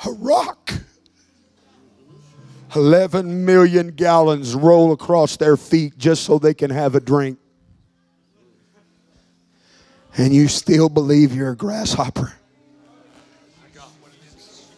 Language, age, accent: English, 50-69, American